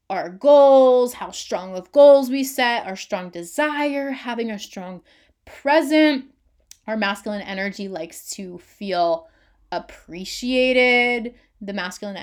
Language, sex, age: English, female, 20-39